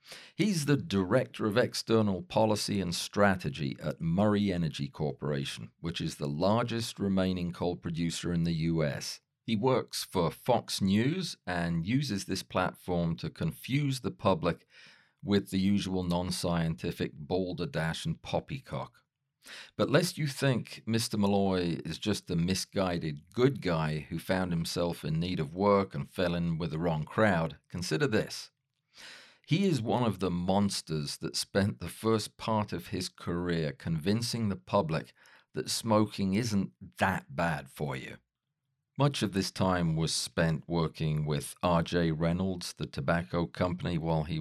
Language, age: English, 40-59